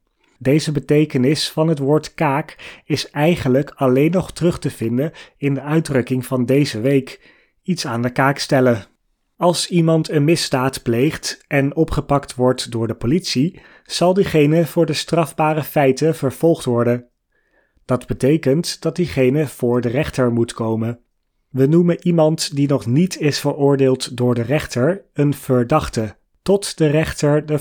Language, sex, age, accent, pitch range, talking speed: Dutch, male, 30-49, Dutch, 125-155 Hz, 150 wpm